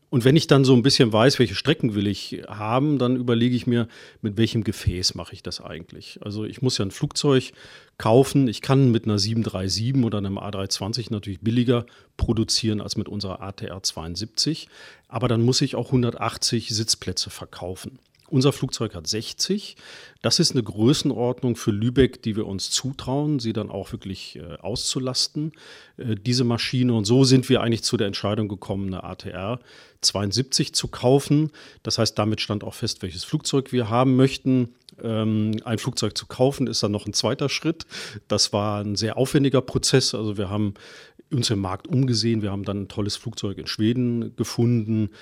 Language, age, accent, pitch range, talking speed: German, 40-59, German, 105-130 Hz, 180 wpm